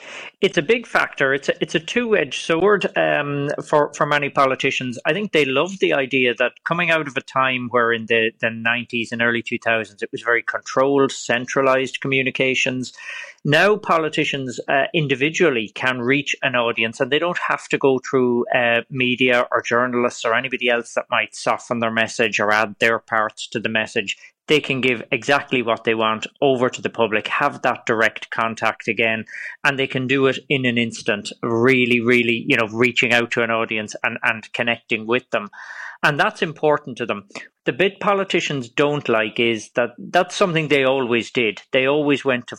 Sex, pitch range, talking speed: male, 115-145 Hz, 185 wpm